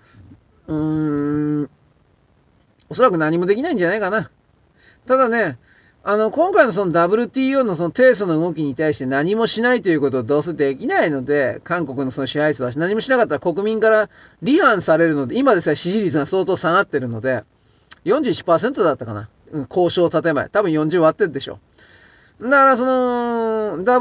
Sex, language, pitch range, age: male, Japanese, 145-225 Hz, 30-49